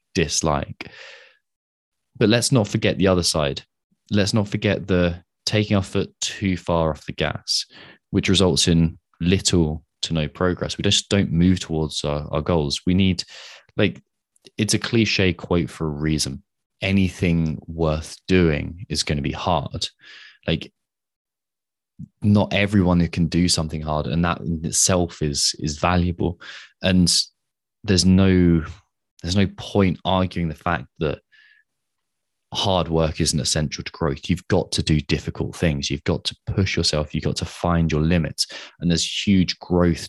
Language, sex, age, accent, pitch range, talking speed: English, male, 20-39, British, 80-95 Hz, 155 wpm